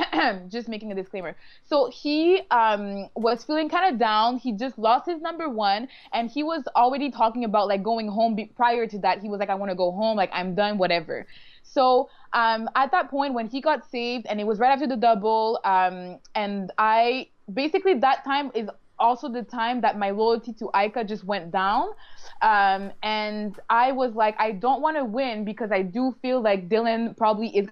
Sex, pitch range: female, 210-260 Hz